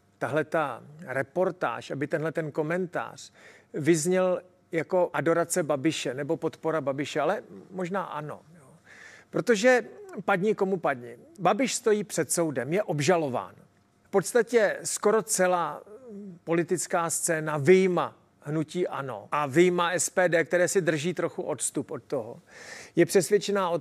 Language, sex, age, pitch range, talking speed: Czech, male, 40-59, 165-195 Hz, 125 wpm